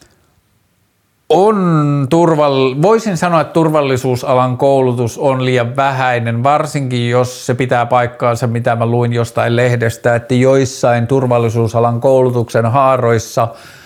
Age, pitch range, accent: 50-69, 115-135 Hz, native